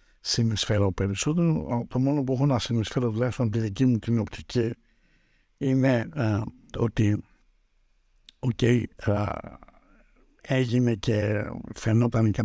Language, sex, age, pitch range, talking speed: Greek, male, 60-79, 105-135 Hz, 110 wpm